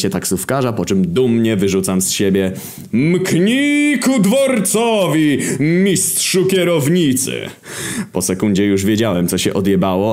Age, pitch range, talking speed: 20-39, 100-140 Hz, 115 wpm